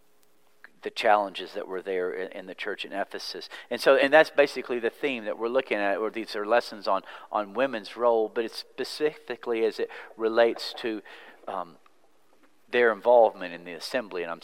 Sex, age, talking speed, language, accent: male, 50-69, 185 wpm, English, American